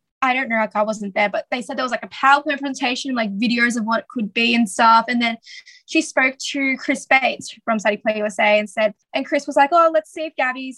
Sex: female